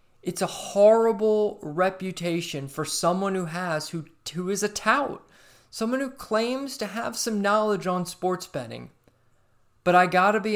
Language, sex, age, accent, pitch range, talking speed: English, male, 20-39, American, 150-205 Hz, 160 wpm